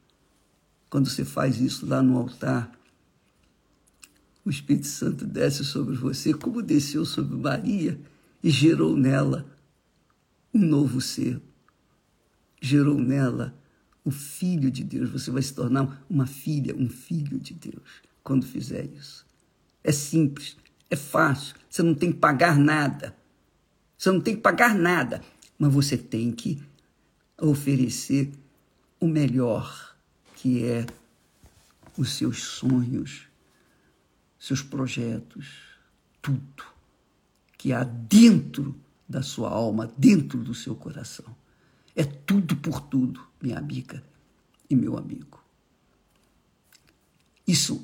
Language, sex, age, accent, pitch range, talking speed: Portuguese, male, 50-69, Brazilian, 130-155 Hz, 120 wpm